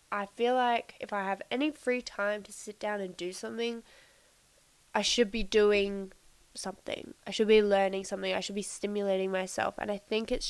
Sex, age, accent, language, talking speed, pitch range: female, 10-29, Australian, English, 195 wpm, 195-230 Hz